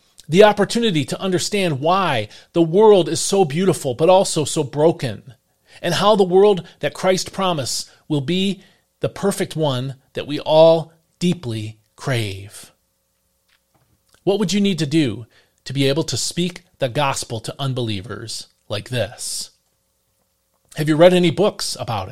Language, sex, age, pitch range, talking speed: English, male, 40-59, 130-185 Hz, 145 wpm